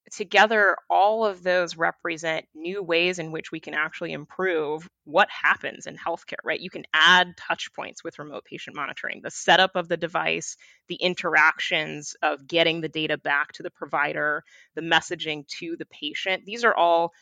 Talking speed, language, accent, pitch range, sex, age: 175 wpm, English, American, 160-195 Hz, female, 20-39